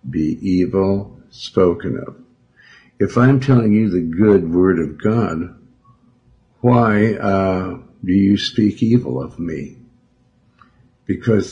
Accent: American